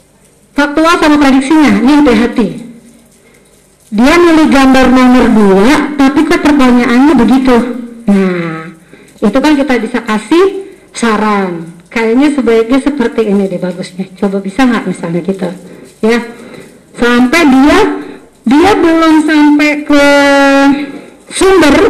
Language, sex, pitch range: Indonesian, female, 225-290 Hz